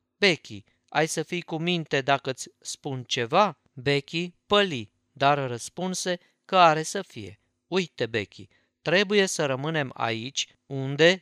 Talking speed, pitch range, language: 130 wpm, 120-175 Hz, Romanian